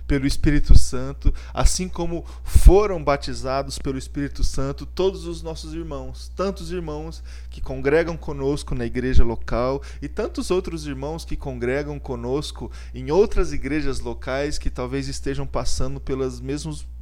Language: Portuguese